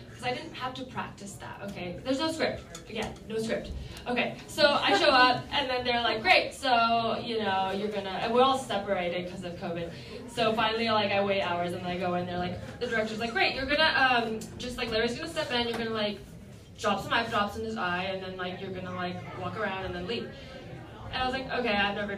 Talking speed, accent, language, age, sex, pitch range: 240 wpm, American, English, 10-29, female, 185-250 Hz